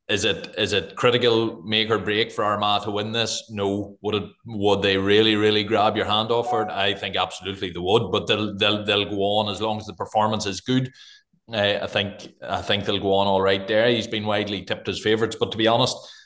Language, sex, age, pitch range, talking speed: English, male, 20-39, 100-110 Hz, 235 wpm